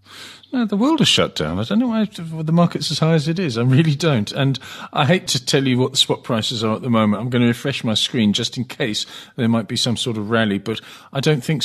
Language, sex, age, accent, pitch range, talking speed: English, male, 40-59, British, 110-135 Hz, 280 wpm